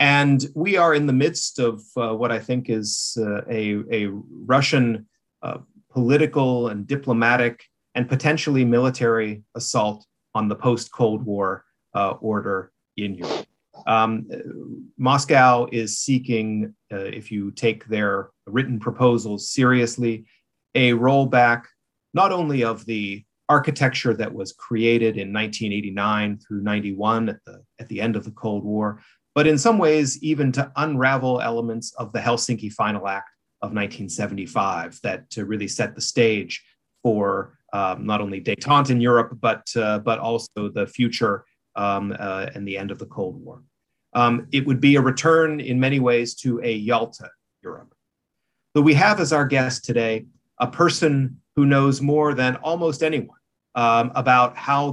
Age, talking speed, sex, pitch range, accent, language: 30-49, 150 wpm, male, 110-135 Hz, American, English